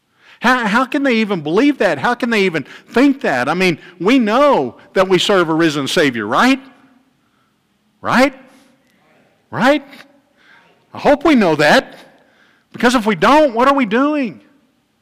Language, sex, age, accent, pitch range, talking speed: English, male, 50-69, American, 145-245 Hz, 155 wpm